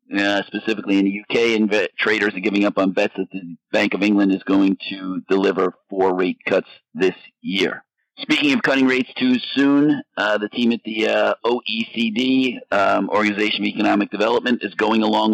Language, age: English, 50-69